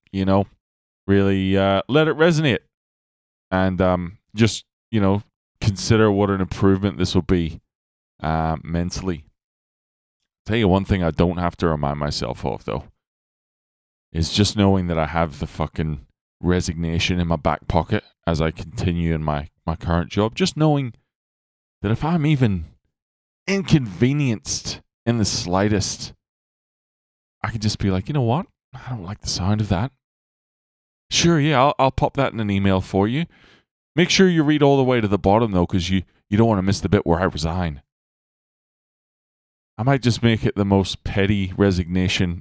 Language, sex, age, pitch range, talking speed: English, male, 20-39, 85-110 Hz, 175 wpm